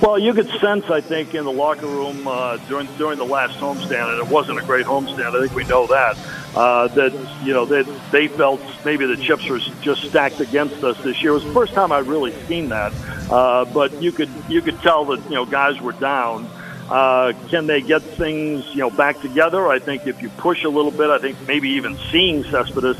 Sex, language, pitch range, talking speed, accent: male, English, 130-155 Hz, 235 wpm, American